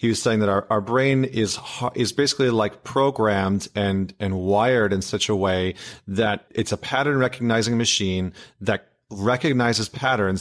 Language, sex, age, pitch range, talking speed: English, male, 30-49, 105-135 Hz, 160 wpm